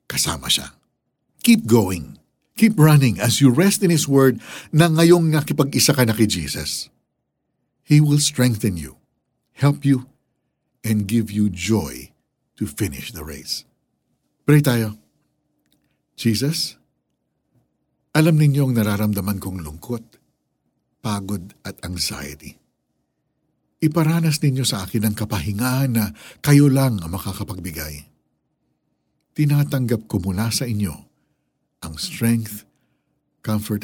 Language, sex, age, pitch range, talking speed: Filipino, male, 60-79, 95-145 Hz, 110 wpm